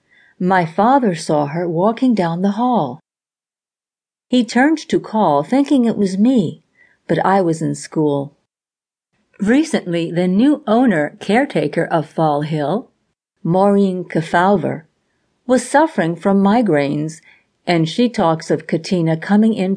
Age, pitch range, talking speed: 50-69, 160-225 Hz, 125 wpm